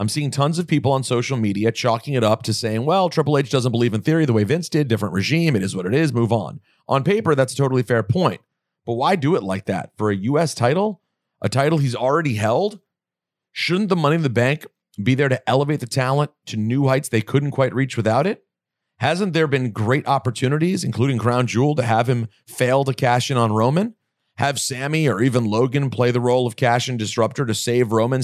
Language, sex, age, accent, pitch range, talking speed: English, male, 40-59, American, 115-145 Hz, 230 wpm